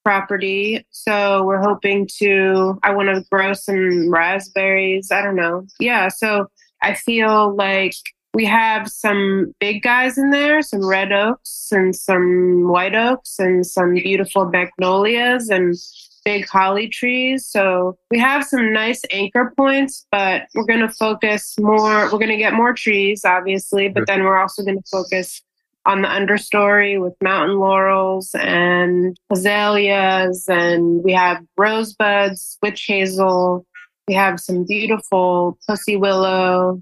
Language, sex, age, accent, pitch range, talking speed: English, female, 20-39, American, 190-220 Hz, 145 wpm